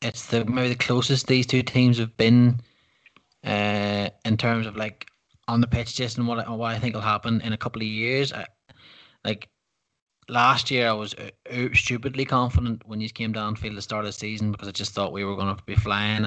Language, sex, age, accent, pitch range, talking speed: English, male, 20-39, Irish, 105-125 Hz, 225 wpm